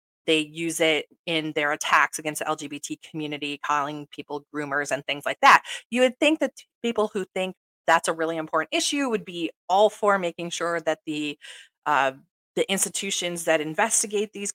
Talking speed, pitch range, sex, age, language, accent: 175 wpm, 150-190 Hz, female, 30-49, English, American